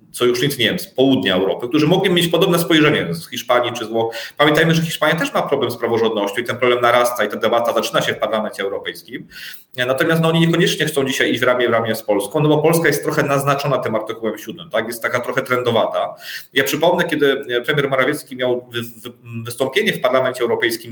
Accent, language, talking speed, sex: native, Polish, 210 wpm, male